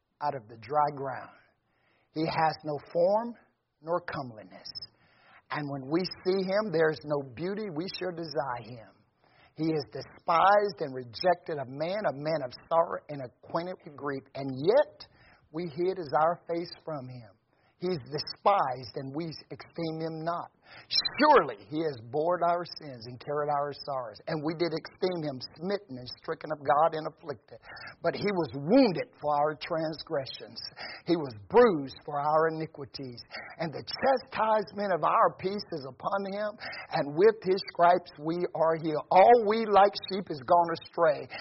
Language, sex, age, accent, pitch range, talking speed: English, male, 50-69, American, 150-195 Hz, 165 wpm